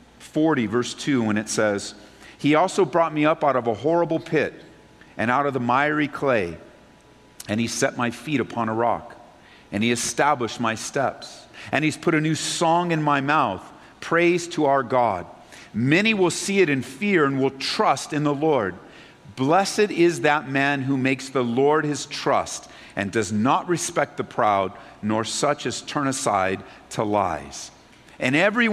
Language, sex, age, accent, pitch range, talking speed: English, male, 50-69, American, 135-195 Hz, 180 wpm